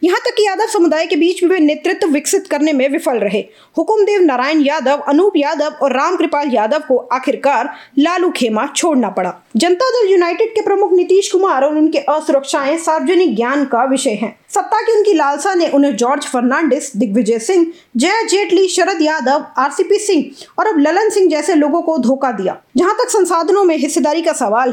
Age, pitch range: 20-39, 275-365 Hz